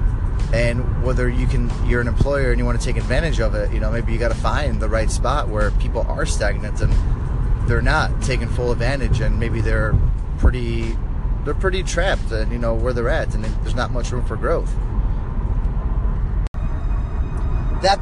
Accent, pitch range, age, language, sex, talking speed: American, 105-125 Hz, 30-49, English, male, 185 wpm